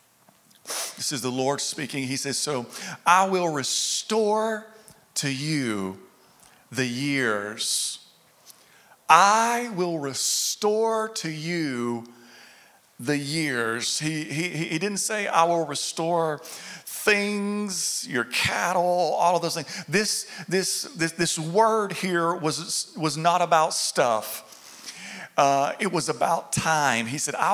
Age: 40-59